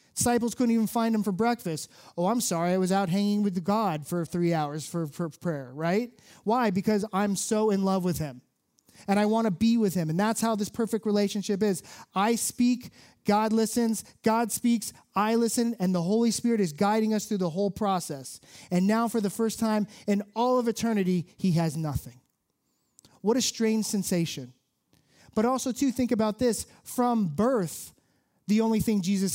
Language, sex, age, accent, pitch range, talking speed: English, male, 30-49, American, 155-215 Hz, 190 wpm